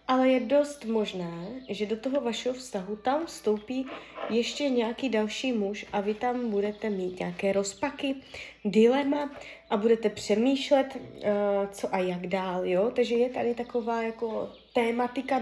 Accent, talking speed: native, 150 wpm